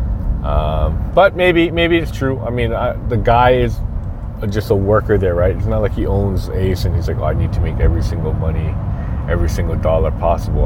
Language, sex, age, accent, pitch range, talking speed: English, male, 30-49, American, 90-110 Hz, 215 wpm